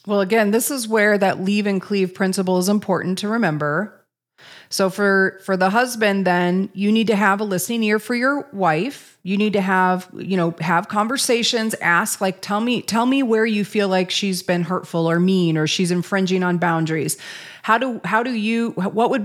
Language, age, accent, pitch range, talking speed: English, 30-49, American, 185-230 Hz, 205 wpm